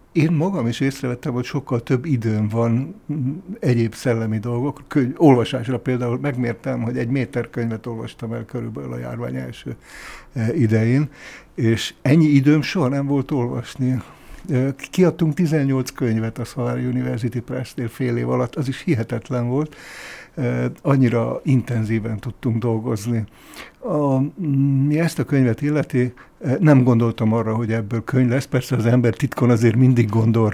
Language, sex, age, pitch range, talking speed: Hungarian, male, 60-79, 115-135 Hz, 140 wpm